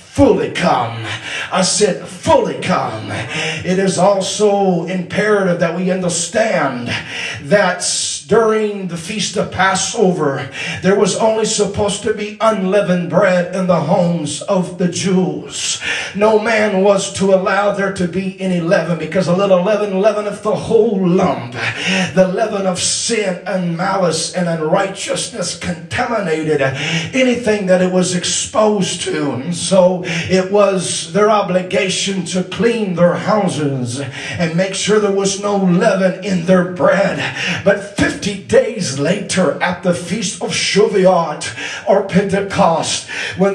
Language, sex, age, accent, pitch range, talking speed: English, male, 40-59, American, 180-210 Hz, 135 wpm